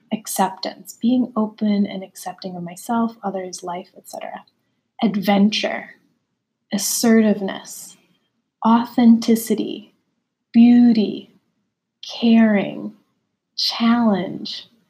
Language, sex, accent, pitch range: English, female, American, 205-230 Hz